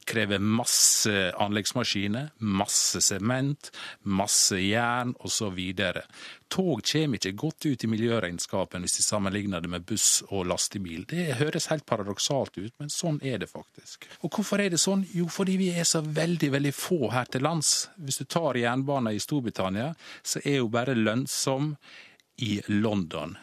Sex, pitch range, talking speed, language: male, 100-155 Hz, 160 wpm, English